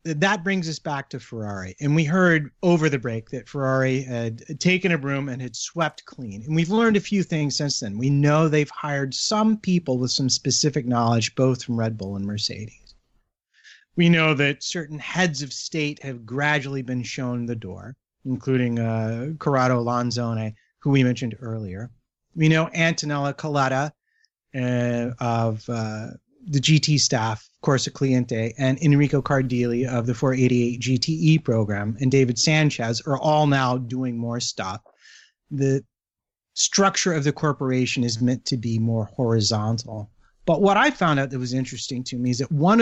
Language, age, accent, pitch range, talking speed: English, 30-49, American, 125-155 Hz, 170 wpm